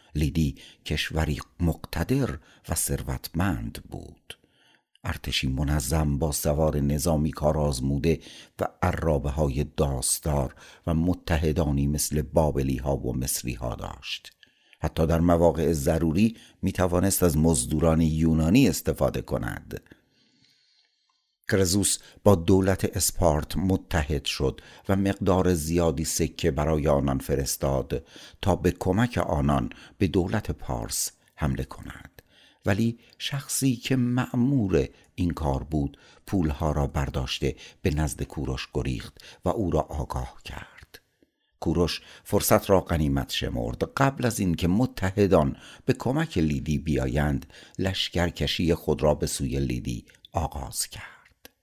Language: Persian